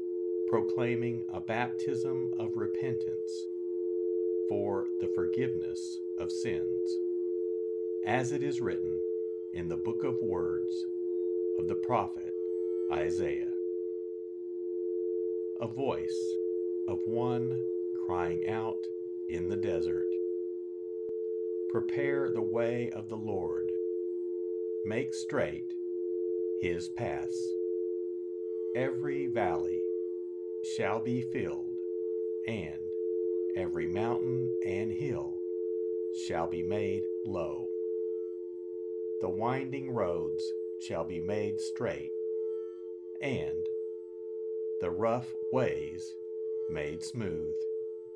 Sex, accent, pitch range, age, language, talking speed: male, American, 90-115 Hz, 50-69, English, 85 wpm